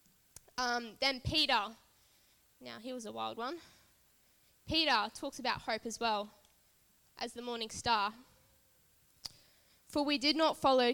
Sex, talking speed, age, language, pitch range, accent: female, 130 wpm, 10-29, English, 215-255 Hz, Australian